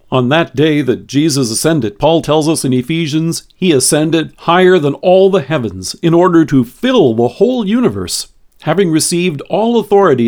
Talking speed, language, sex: 170 wpm, English, male